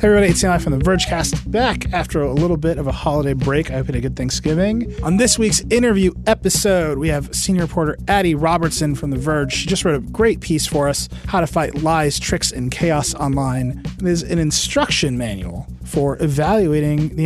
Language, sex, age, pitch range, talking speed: English, male, 30-49, 140-180 Hz, 210 wpm